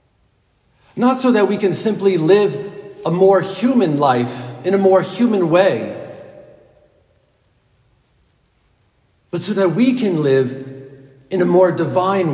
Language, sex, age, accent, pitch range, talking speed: English, male, 50-69, American, 135-205 Hz, 125 wpm